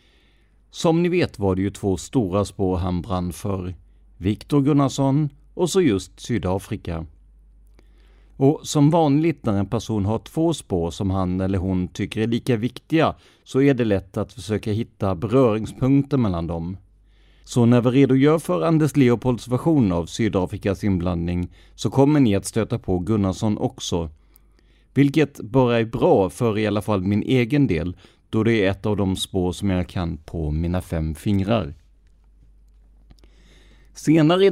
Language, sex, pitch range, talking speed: Swedish, male, 90-125 Hz, 160 wpm